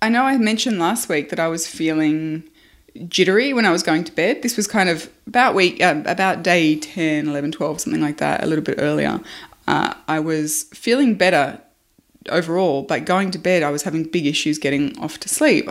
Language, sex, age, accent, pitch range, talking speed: English, female, 20-39, Australian, 150-195 Hz, 210 wpm